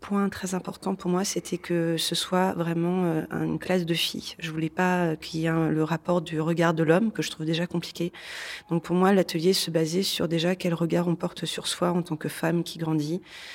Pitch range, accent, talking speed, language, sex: 160-175 Hz, French, 240 wpm, French, female